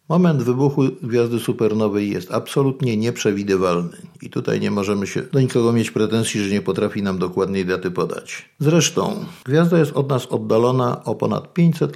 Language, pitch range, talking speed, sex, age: Polish, 110-160 Hz, 160 wpm, male, 50-69